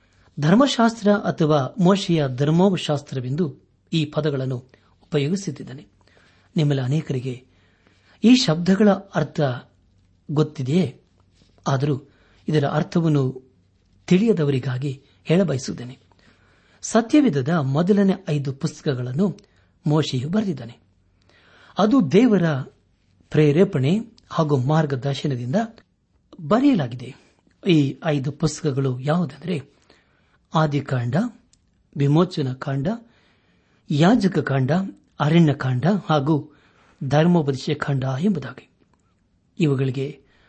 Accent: native